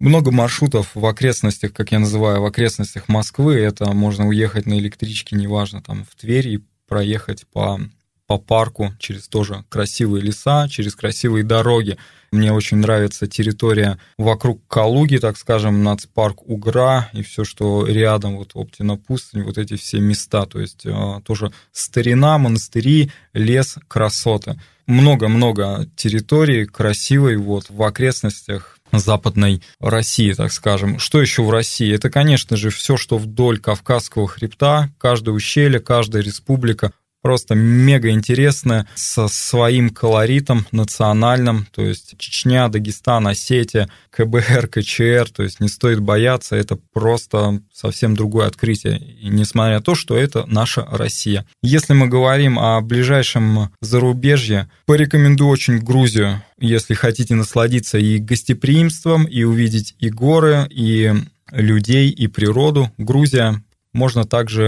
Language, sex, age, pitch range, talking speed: Russian, male, 20-39, 105-125 Hz, 130 wpm